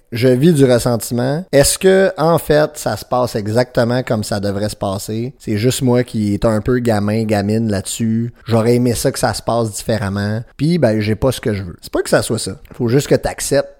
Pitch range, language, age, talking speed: 105-130 Hz, French, 30-49, 240 wpm